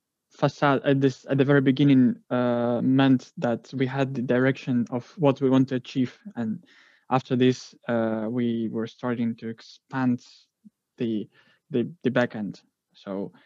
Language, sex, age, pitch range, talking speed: English, male, 20-39, 120-135 Hz, 150 wpm